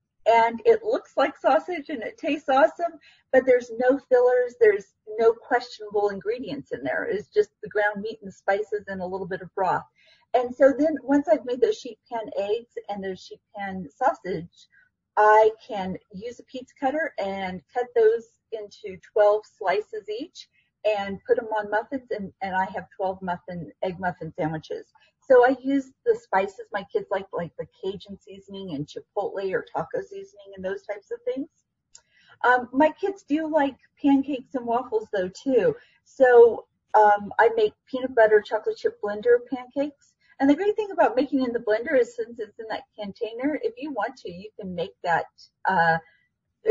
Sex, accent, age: female, American, 40-59